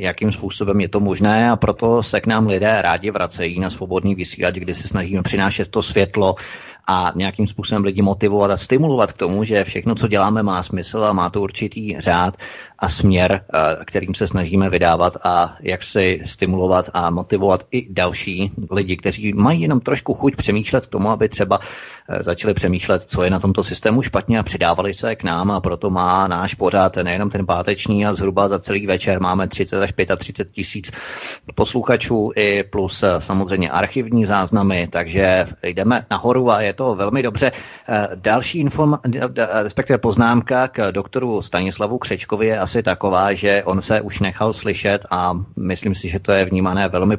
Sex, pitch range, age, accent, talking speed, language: male, 95-110 Hz, 30-49, native, 175 wpm, Czech